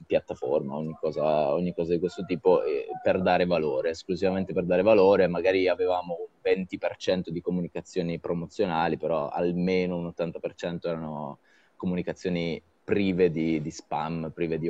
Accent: native